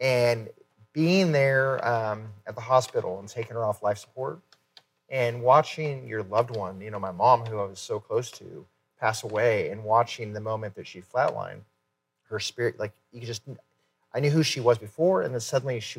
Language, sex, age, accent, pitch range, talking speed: English, male, 30-49, American, 110-135 Hz, 195 wpm